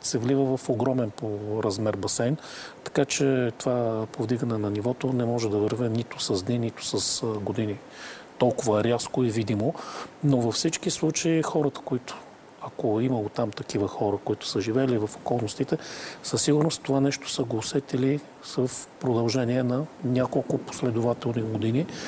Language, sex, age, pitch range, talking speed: Bulgarian, male, 40-59, 110-140 Hz, 155 wpm